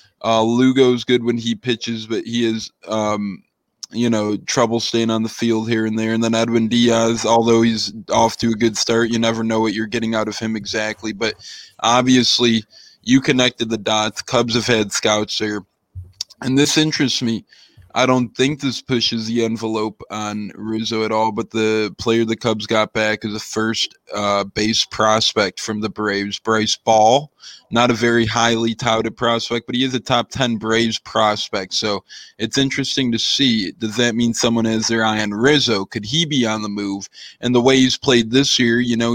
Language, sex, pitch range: English, male, 110-120 Hz